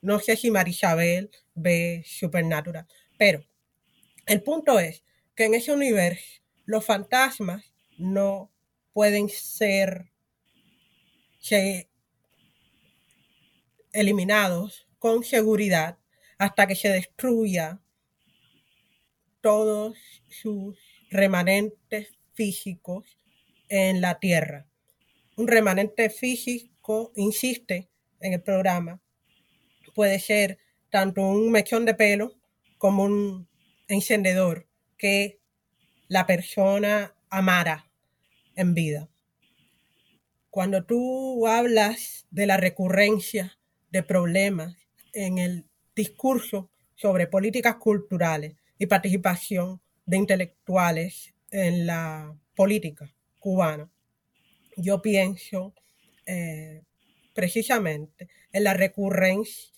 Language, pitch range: Spanish, 180-210 Hz